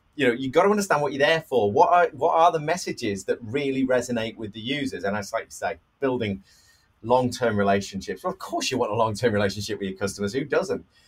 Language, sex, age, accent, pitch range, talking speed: English, male, 30-49, British, 105-160 Hz, 235 wpm